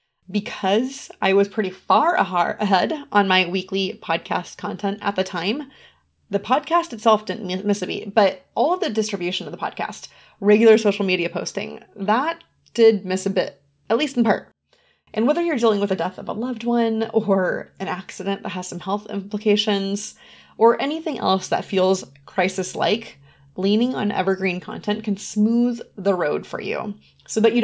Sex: female